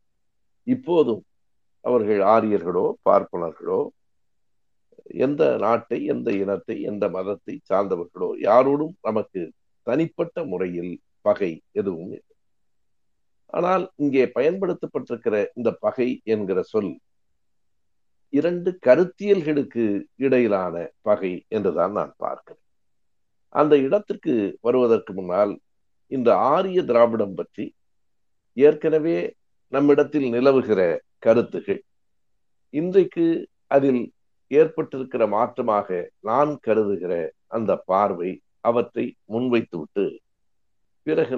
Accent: native